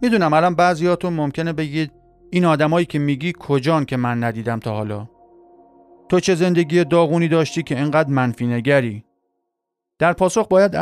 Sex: male